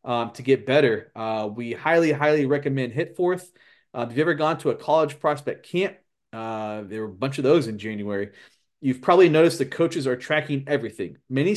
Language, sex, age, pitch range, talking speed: English, male, 30-49, 120-155 Hz, 195 wpm